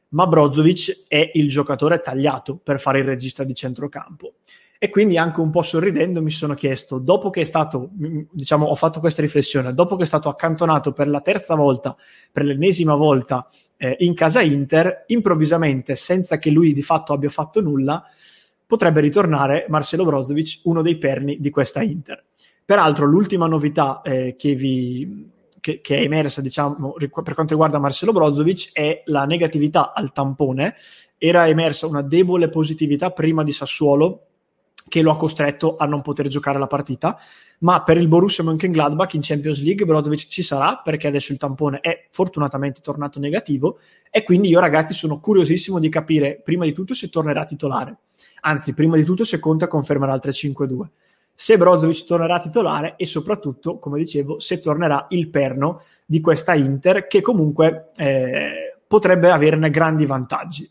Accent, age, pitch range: Italian, 20-39, 145-170 Hz